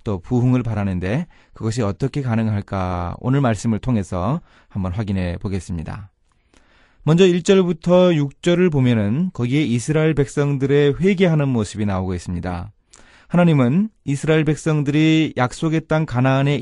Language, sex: Korean, male